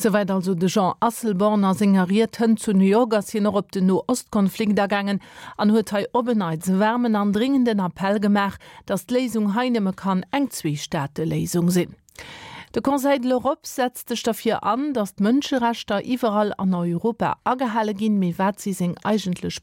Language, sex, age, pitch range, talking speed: English, female, 40-59, 190-235 Hz, 160 wpm